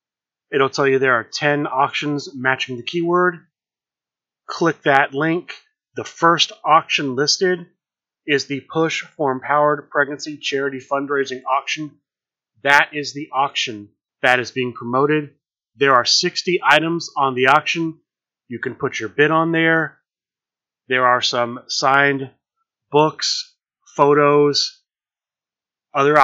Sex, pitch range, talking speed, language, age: male, 130-150 Hz, 125 wpm, English, 30-49